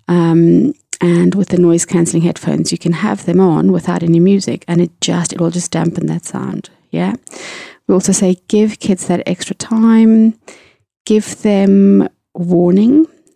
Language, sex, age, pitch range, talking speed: English, female, 30-49, 170-195 Hz, 160 wpm